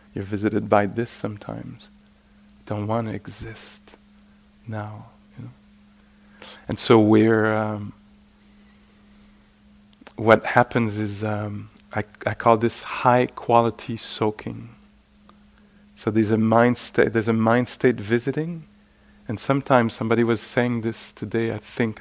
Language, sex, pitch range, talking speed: English, male, 105-115 Hz, 125 wpm